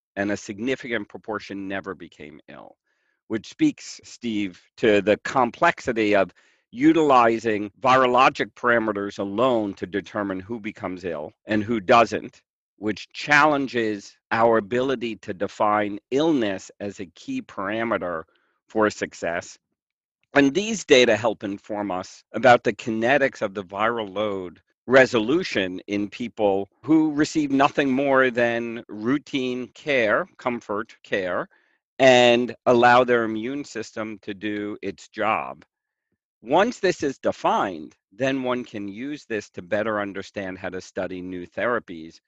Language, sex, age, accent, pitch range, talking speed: English, male, 50-69, American, 100-125 Hz, 130 wpm